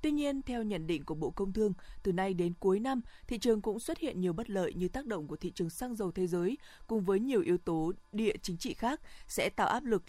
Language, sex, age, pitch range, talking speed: Vietnamese, female, 20-39, 180-230 Hz, 270 wpm